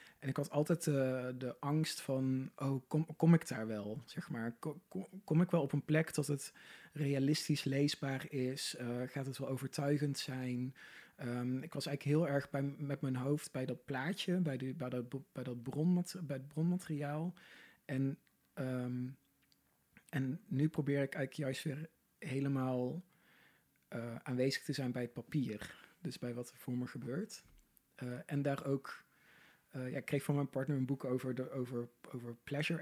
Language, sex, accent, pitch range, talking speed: Dutch, male, Dutch, 130-155 Hz, 165 wpm